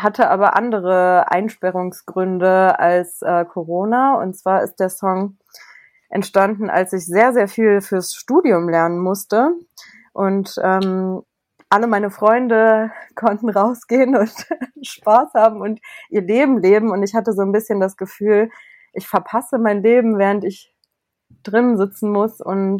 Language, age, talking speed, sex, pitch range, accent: German, 20-39, 140 wpm, female, 185-220 Hz, German